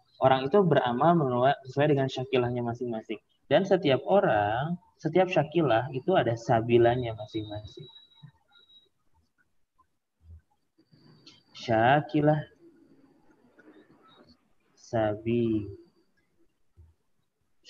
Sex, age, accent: male, 20-39, native